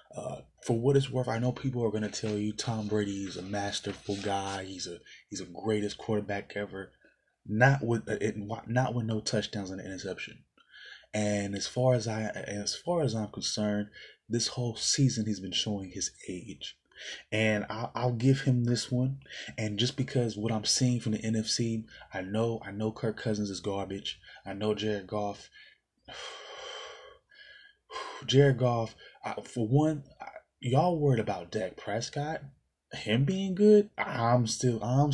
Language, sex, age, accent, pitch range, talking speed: English, male, 20-39, American, 105-130 Hz, 170 wpm